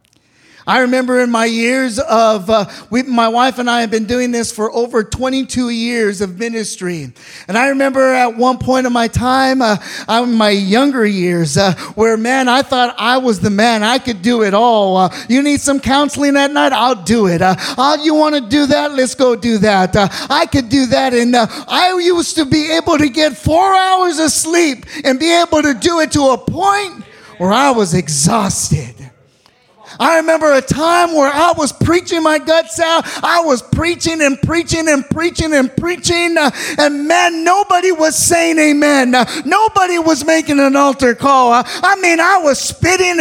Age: 40-59